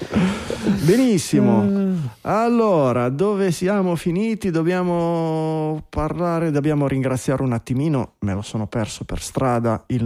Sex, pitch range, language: male, 130-200 Hz, Italian